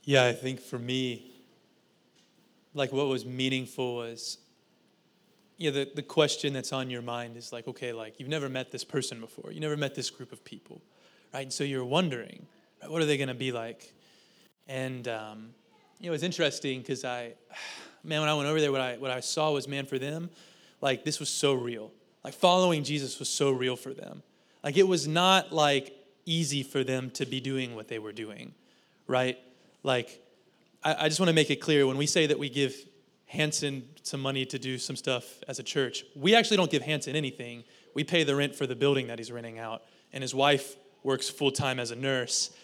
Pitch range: 125-150 Hz